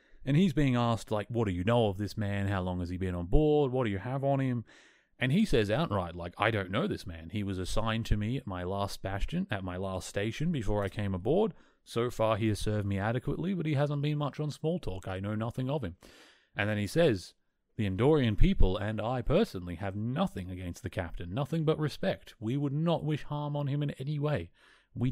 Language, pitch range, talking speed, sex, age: English, 95-140 Hz, 240 wpm, male, 30-49